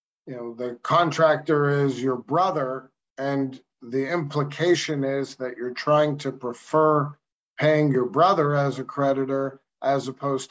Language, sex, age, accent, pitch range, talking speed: English, male, 50-69, American, 130-150 Hz, 135 wpm